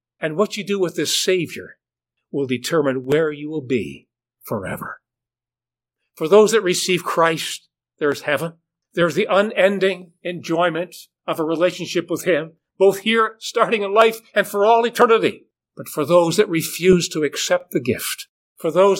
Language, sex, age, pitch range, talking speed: English, male, 60-79, 145-185 Hz, 160 wpm